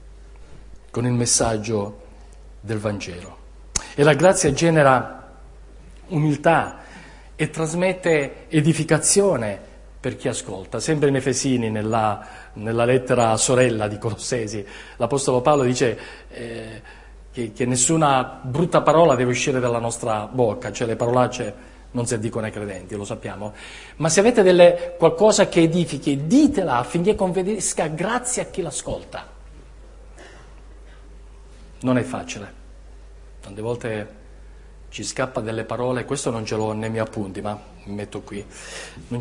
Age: 40-59